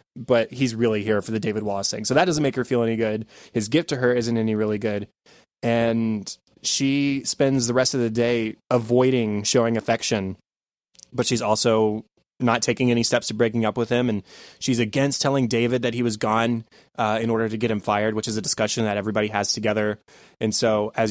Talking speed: 215 wpm